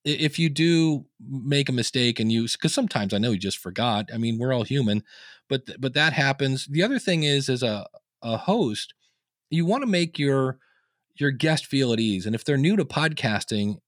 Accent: American